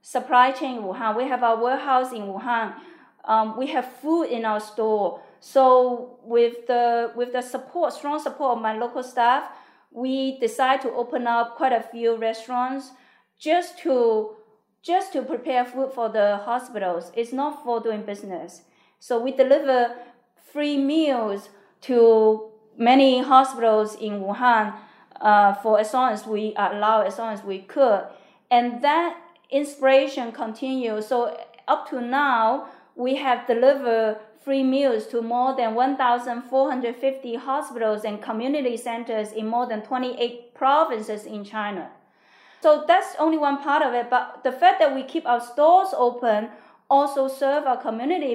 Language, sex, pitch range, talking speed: English, female, 225-265 Hz, 150 wpm